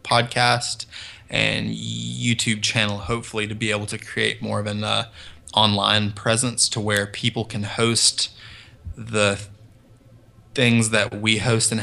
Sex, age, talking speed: male, 20-39, 135 wpm